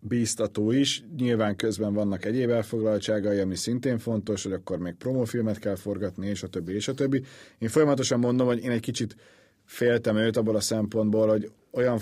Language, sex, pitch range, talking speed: Hungarian, male, 105-125 Hz, 180 wpm